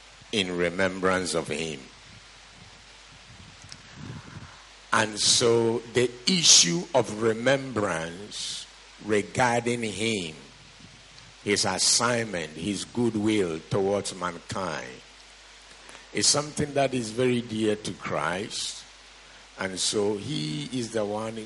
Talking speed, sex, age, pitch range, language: 90 wpm, male, 60-79, 100-135 Hz, English